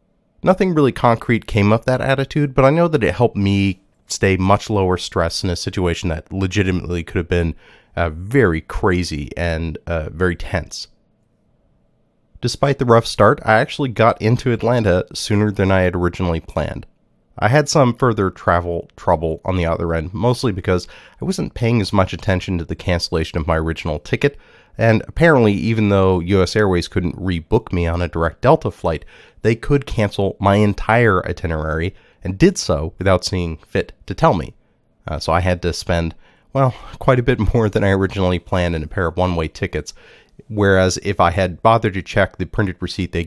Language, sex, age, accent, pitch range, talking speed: English, male, 30-49, American, 90-115 Hz, 185 wpm